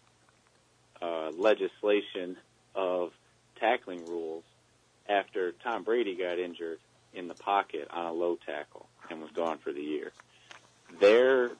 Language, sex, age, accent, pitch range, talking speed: English, male, 40-59, American, 85-105 Hz, 125 wpm